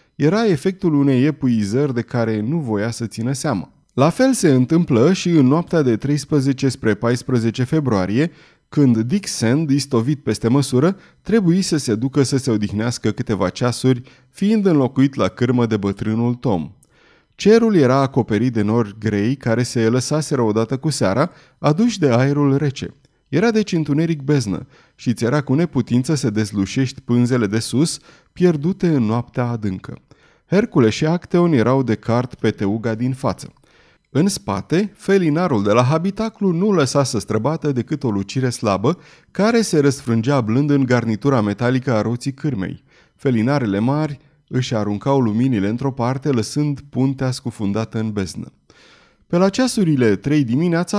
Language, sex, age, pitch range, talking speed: Romanian, male, 30-49, 115-155 Hz, 150 wpm